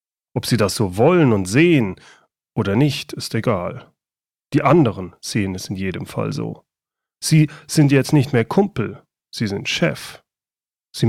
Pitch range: 115-155 Hz